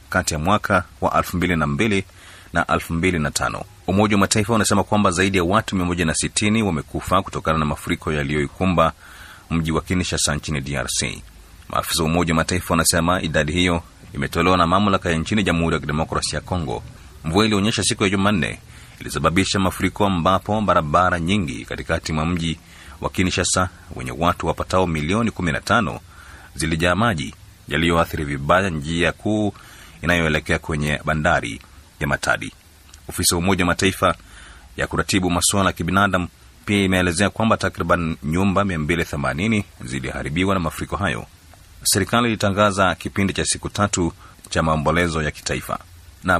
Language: Swahili